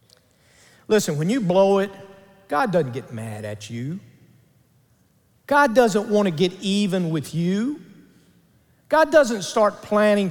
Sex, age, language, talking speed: male, 50-69, English, 135 wpm